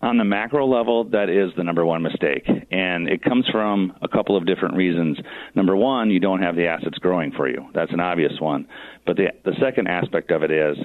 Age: 40-59